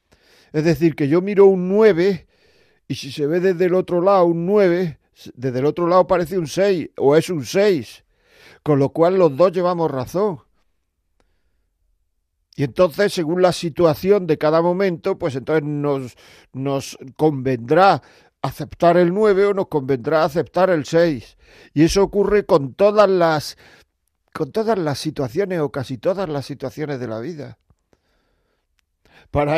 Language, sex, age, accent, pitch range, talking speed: Spanish, male, 50-69, Spanish, 135-180 Hz, 155 wpm